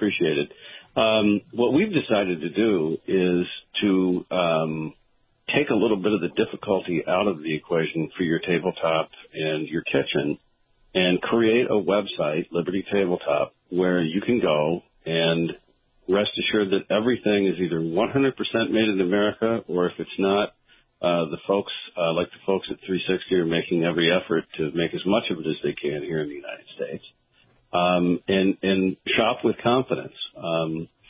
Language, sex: English, male